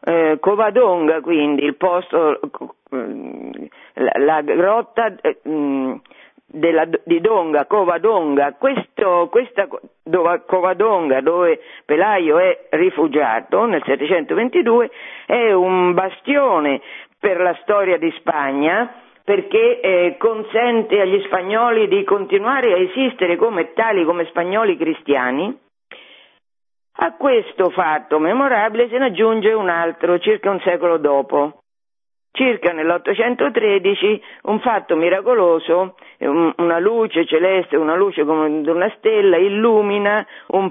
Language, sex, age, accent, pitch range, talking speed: Italian, female, 50-69, native, 170-250 Hz, 110 wpm